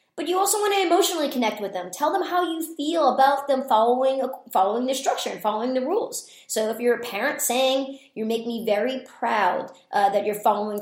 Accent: American